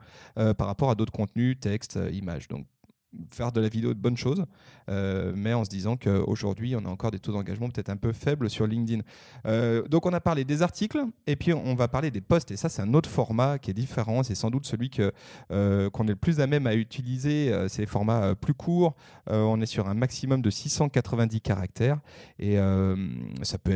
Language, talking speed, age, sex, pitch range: French, 225 wpm, 30-49, male, 105-135 Hz